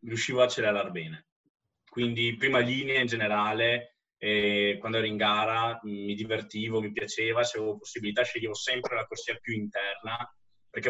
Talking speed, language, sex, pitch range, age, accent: 155 wpm, Italian, male, 105-120 Hz, 20-39, native